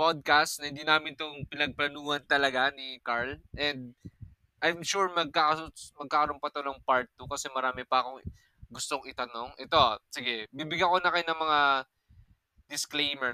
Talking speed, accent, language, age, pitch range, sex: 150 wpm, native, Filipino, 20-39, 115-145 Hz, male